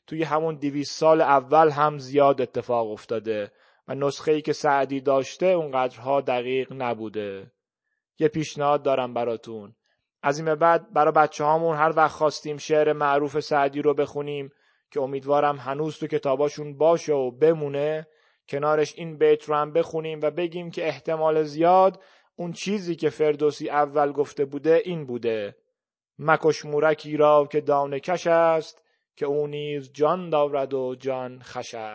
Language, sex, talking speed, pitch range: Persian, male, 145 wpm, 140-160 Hz